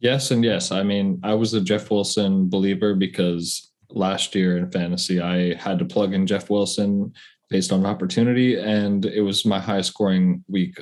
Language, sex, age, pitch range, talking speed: English, male, 20-39, 90-105 Hz, 185 wpm